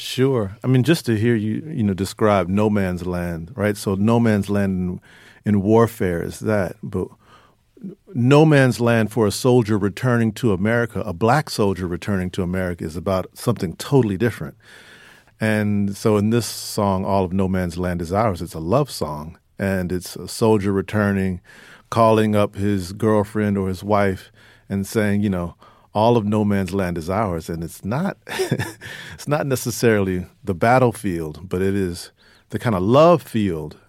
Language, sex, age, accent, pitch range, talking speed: English, male, 50-69, American, 95-115 Hz, 175 wpm